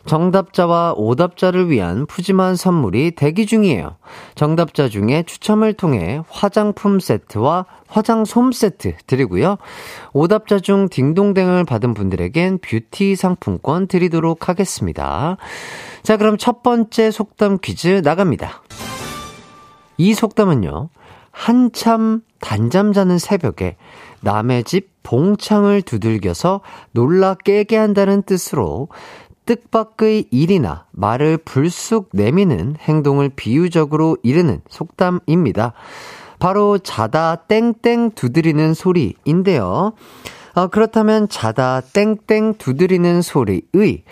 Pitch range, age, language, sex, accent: 140-205 Hz, 40-59, Korean, male, native